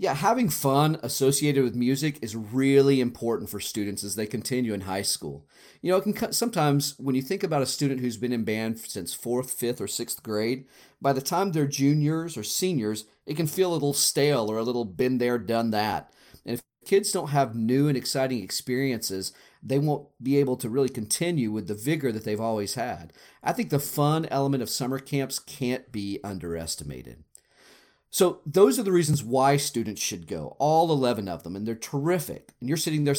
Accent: American